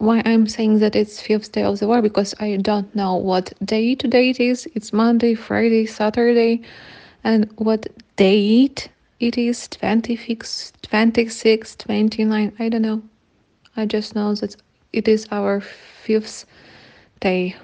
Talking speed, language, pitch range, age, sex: 145 wpm, English, 190-220 Hz, 20-39, female